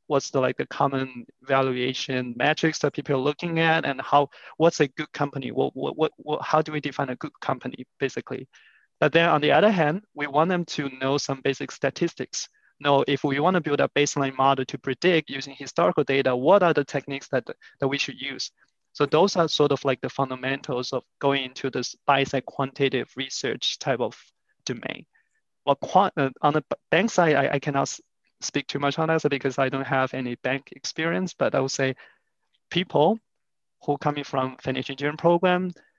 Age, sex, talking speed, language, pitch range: 20-39, male, 195 wpm, English, 135-155 Hz